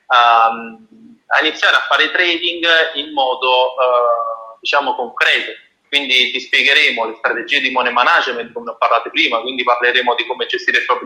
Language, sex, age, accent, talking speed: Italian, male, 30-49, native, 155 wpm